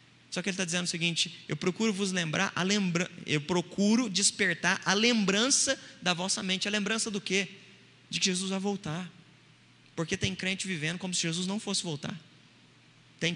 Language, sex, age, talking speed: Portuguese, male, 20-39, 185 wpm